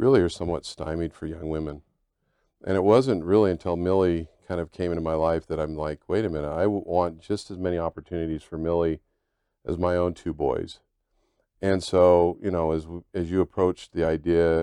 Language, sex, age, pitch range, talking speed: English, male, 50-69, 80-95 Hz, 195 wpm